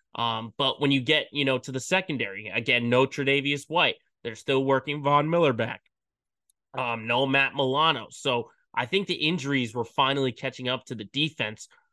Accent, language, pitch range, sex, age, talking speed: American, English, 130-175 Hz, male, 20-39, 180 wpm